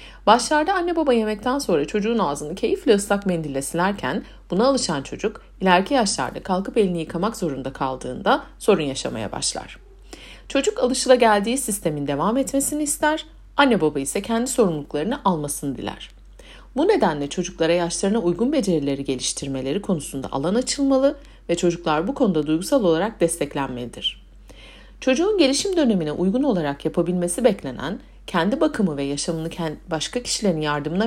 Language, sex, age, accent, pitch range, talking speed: Turkish, female, 60-79, native, 150-245 Hz, 135 wpm